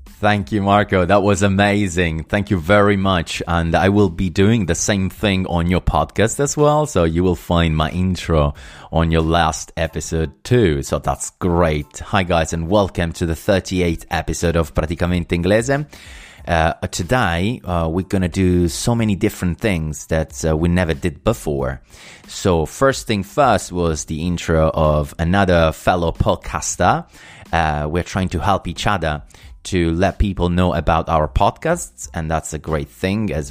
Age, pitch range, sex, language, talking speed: 30-49, 80-100 Hz, male, Italian, 170 wpm